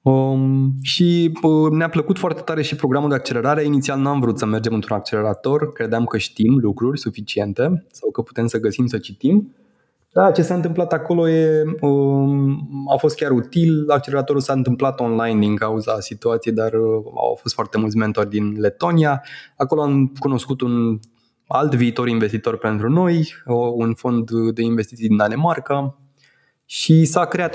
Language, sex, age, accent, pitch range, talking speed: Romanian, male, 20-39, native, 110-145 Hz, 165 wpm